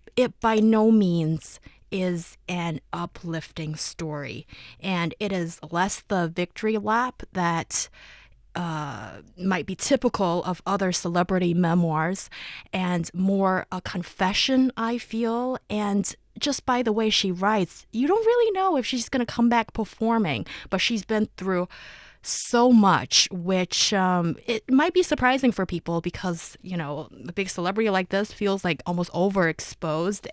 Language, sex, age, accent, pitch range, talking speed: English, female, 30-49, American, 175-220 Hz, 145 wpm